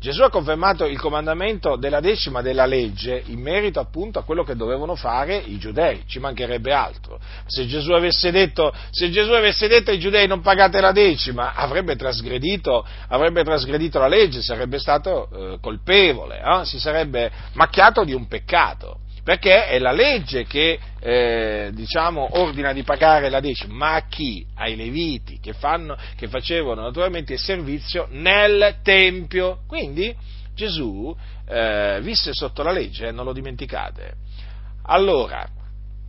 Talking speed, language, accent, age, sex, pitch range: 145 wpm, Italian, native, 40-59, male, 110-175 Hz